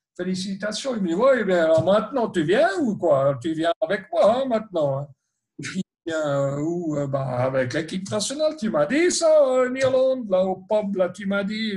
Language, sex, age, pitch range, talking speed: French, male, 60-79, 145-195 Hz, 200 wpm